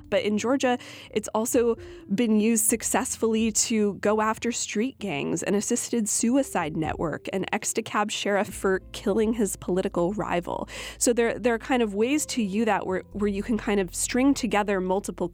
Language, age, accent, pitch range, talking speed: English, 20-39, American, 185-230 Hz, 175 wpm